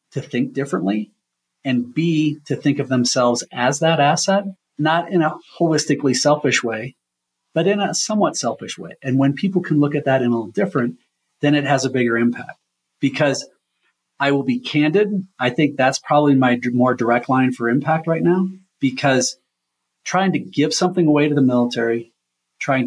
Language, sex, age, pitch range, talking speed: English, male, 40-59, 120-150 Hz, 180 wpm